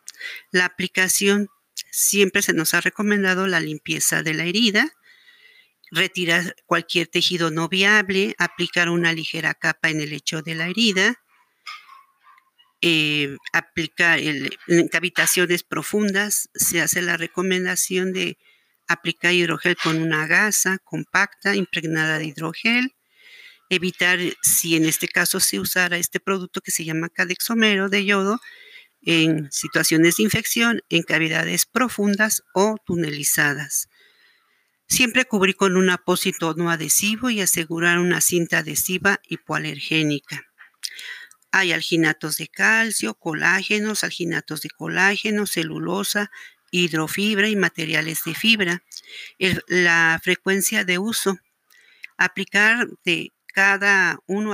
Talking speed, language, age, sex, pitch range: 115 wpm, Spanish, 50-69, female, 165-205 Hz